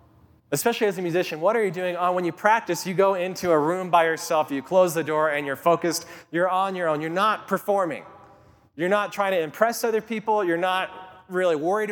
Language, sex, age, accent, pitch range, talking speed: English, male, 20-39, American, 160-195 Hz, 215 wpm